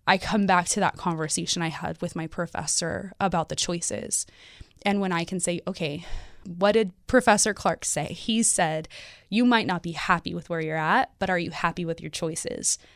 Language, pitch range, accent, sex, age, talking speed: English, 170-195 Hz, American, female, 20-39, 200 wpm